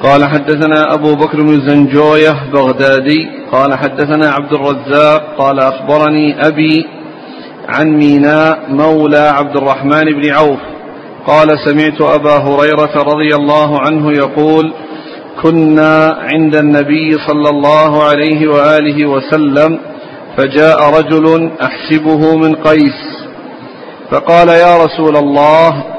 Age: 50-69